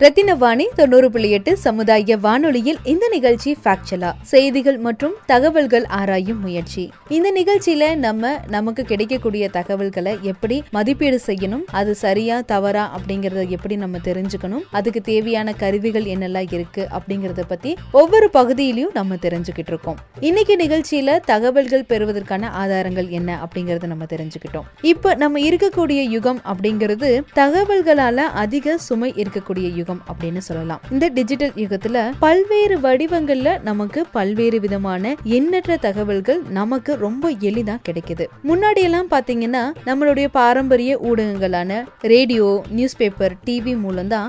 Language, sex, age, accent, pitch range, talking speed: Tamil, female, 20-39, native, 195-280 Hz, 90 wpm